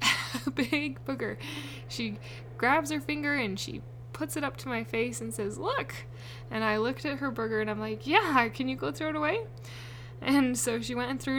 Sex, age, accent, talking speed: female, 10-29, American, 210 wpm